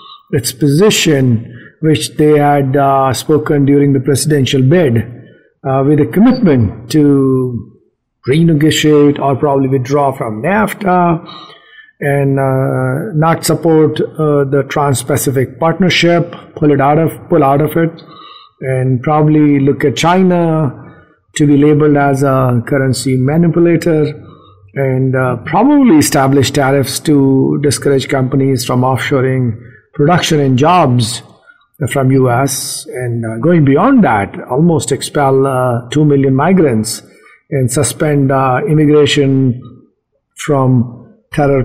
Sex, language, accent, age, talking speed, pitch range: male, English, Indian, 50-69, 115 wpm, 130-155 Hz